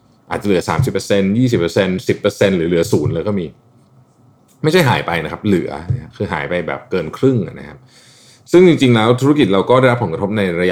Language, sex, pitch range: Thai, male, 95-125 Hz